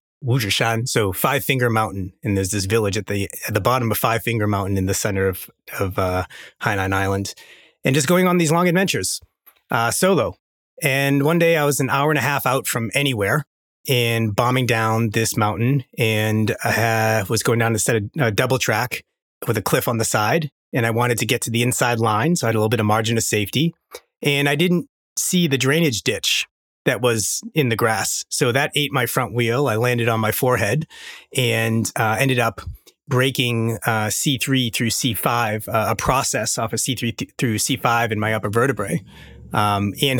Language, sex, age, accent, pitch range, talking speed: English, male, 30-49, American, 110-130 Hz, 200 wpm